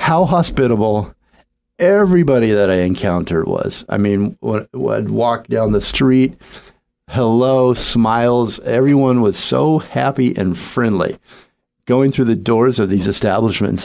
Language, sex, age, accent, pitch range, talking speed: English, male, 50-69, American, 100-135 Hz, 125 wpm